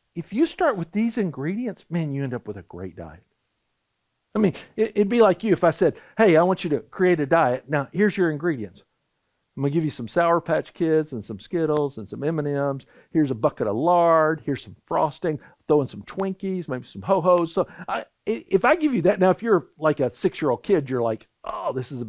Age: 50-69